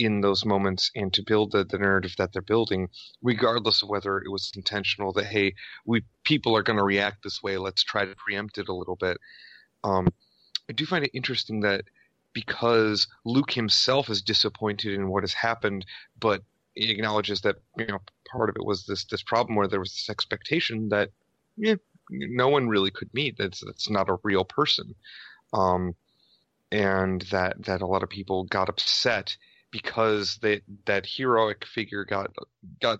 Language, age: English, 30-49